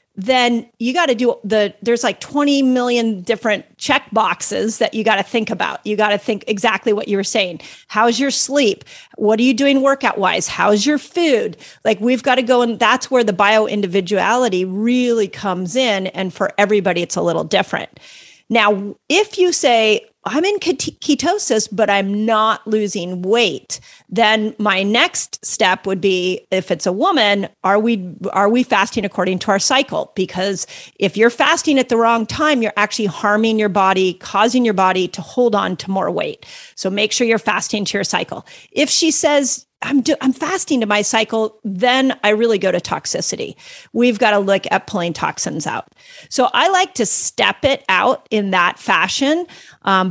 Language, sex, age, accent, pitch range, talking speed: English, female, 40-59, American, 195-245 Hz, 190 wpm